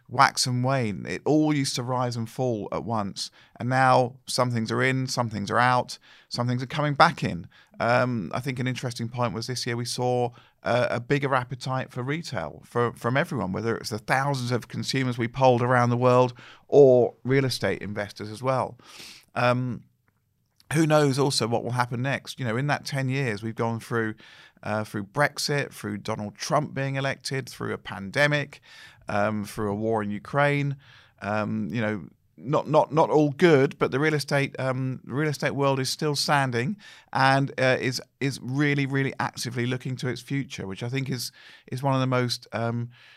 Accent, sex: British, male